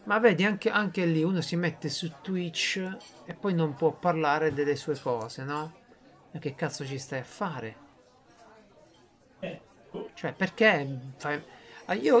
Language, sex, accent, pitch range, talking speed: Italian, male, native, 145-210 Hz, 150 wpm